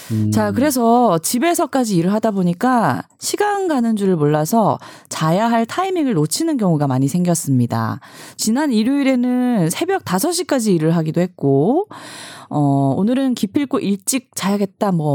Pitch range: 160-255 Hz